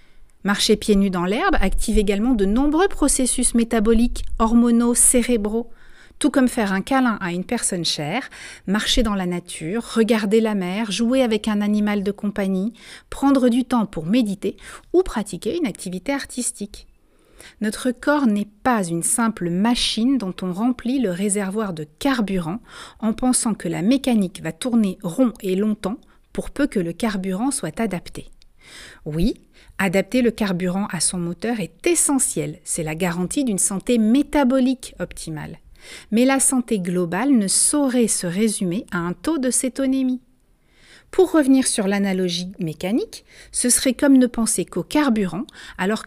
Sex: female